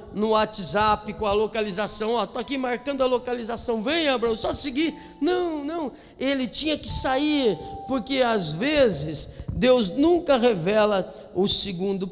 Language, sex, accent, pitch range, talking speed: Portuguese, male, Brazilian, 205-290 Hz, 150 wpm